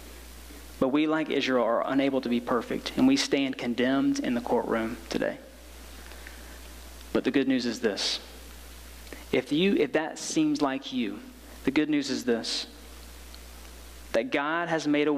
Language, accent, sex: English, American, male